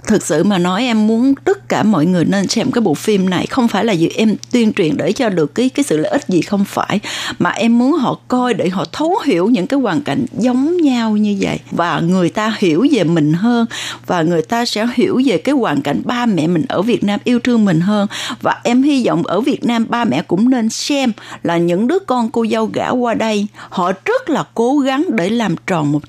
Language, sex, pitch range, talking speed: Vietnamese, female, 195-265 Hz, 245 wpm